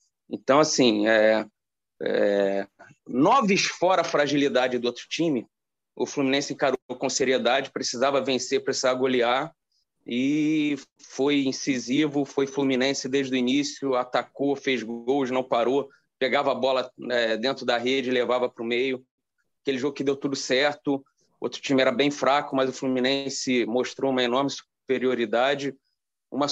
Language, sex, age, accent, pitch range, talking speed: Portuguese, male, 30-49, Brazilian, 125-145 Hz, 135 wpm